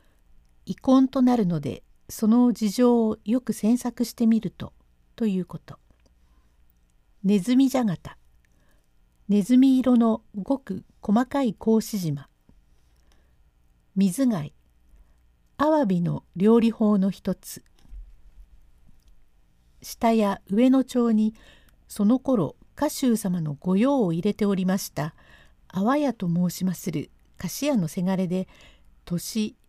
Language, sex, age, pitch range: Japanese, female, 50-69, 145-235 Hz